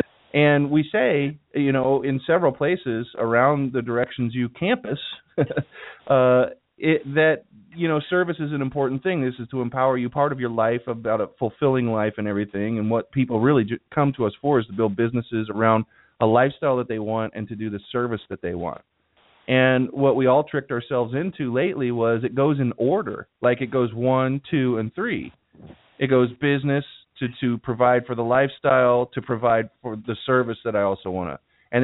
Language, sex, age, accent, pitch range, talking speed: English, male, 30-49, American, 115-140 Hz, 200 wpm